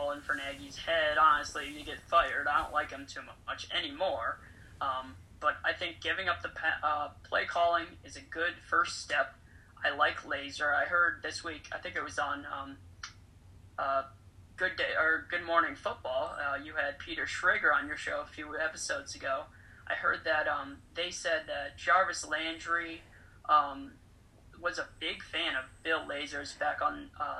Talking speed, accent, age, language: 180 wpm, American, 20-39, English